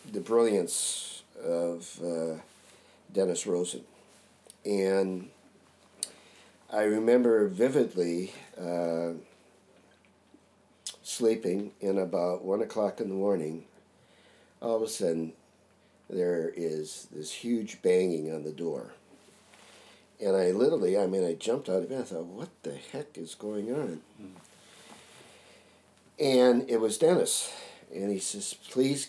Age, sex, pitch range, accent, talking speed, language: 50-69, male, 80-110 Hz, American, 120 wpm, English